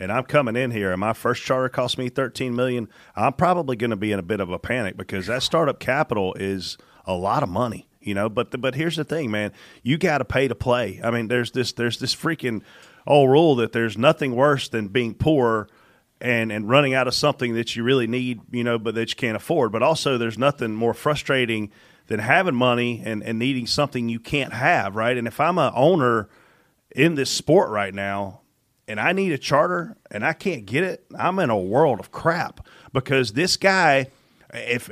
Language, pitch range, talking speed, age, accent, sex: English, 120-160 Hz, 220 wpm, 30-49, American, male